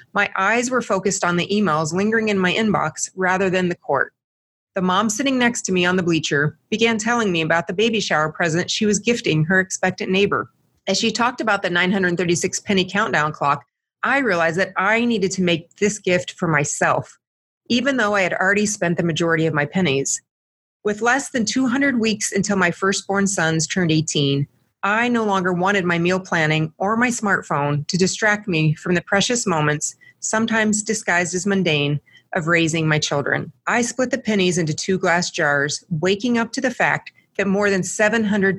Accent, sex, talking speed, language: American, female, 190 wpm, English